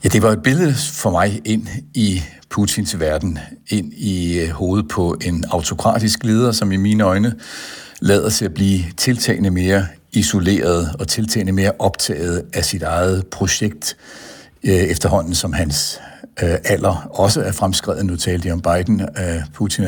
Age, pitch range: 60-79, 85-110 Hz